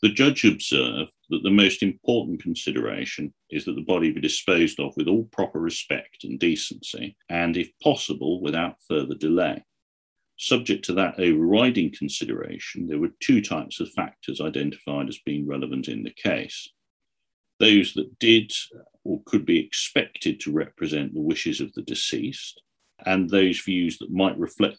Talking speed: 155 wpm